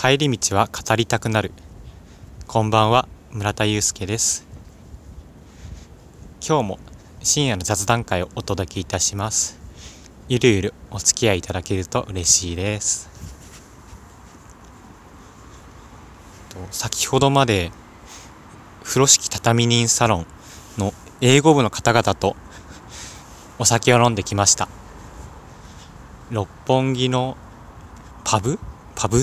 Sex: male